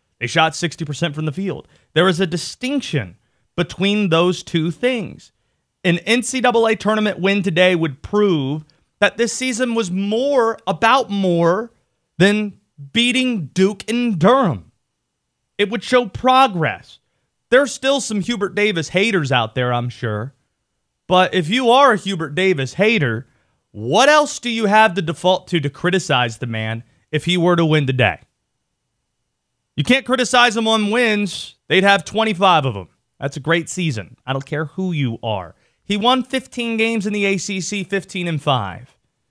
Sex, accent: male, American